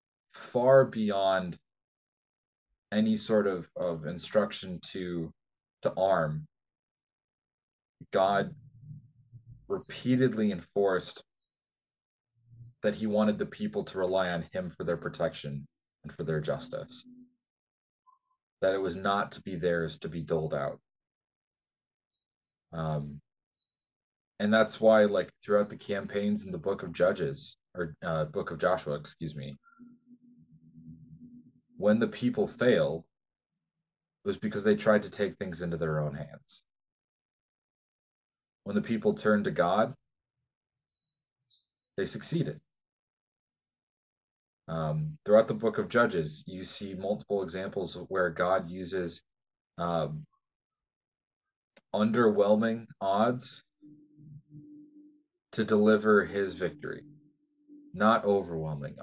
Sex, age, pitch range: male, 20-39, 90-145 Hz